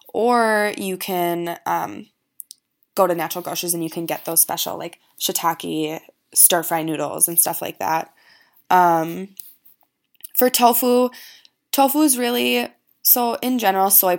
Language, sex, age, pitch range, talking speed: English, female, 20-39, 175-210 Hz, 135 wpm